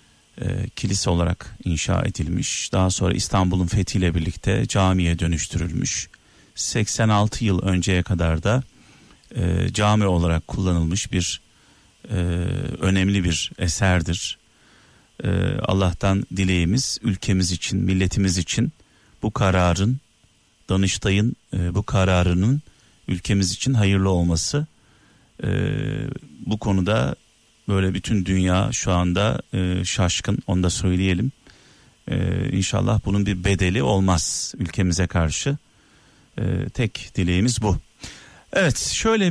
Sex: male